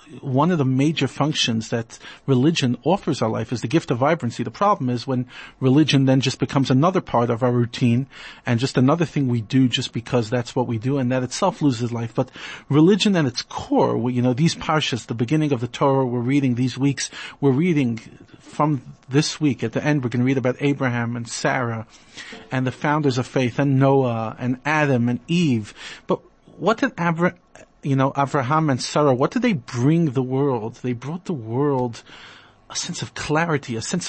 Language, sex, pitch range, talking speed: English, male, 125-155 Hz, 200 wpm